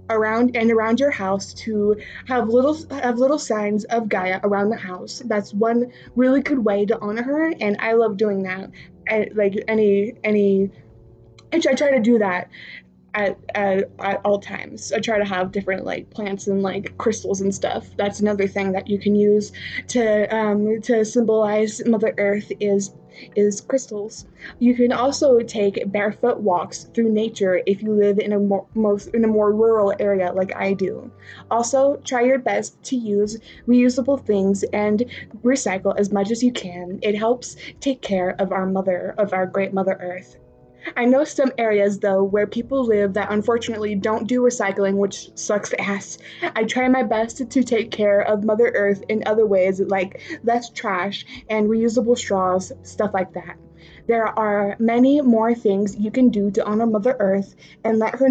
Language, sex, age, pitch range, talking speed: English, female, 20-39, 200-230 Hz, 175 wpm